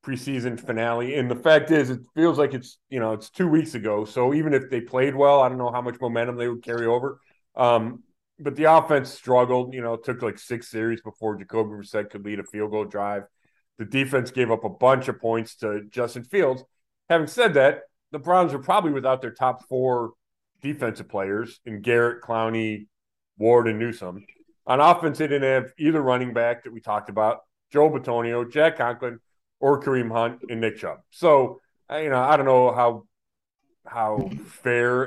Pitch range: 115-135 Hz